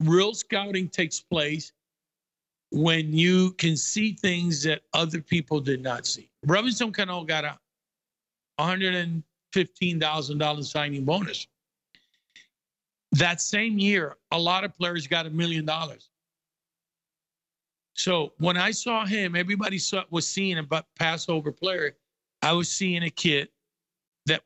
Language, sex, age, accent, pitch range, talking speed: Hebrew, male, 50-69, American, 155-190 Hz, 130 wpm